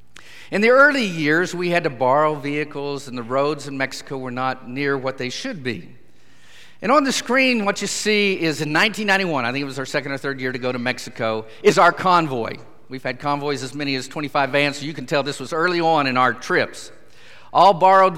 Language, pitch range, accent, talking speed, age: English, 125-170 Hz, American, 225 wpm, 50-69